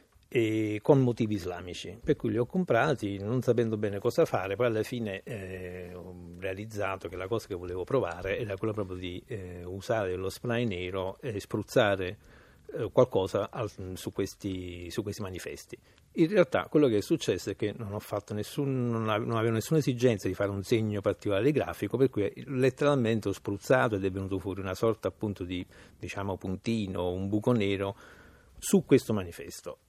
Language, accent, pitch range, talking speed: Italian, native, 95-120 Hz, 175 wpm